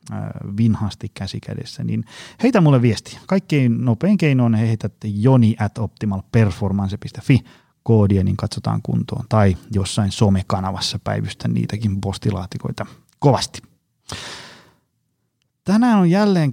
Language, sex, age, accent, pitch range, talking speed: Finnish, male, 30-49, native, 105-130 Hz, 100 wpm